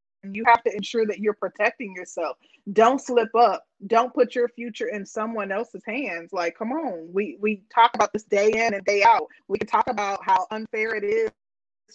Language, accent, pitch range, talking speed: English, American, 205-245 Hz, 200 wpm